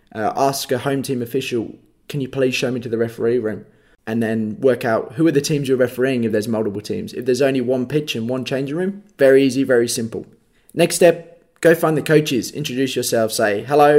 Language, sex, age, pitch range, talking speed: English, male, 20-39, 120-145 Hz, 225 wpm